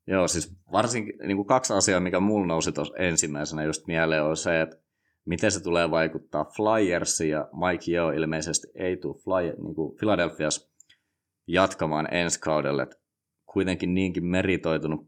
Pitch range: 75-90 Hz